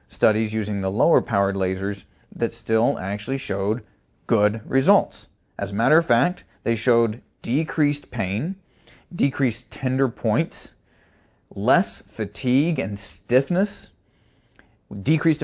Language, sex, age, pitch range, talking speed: English, male, 30-49, 110-145 Hz, 115 wpm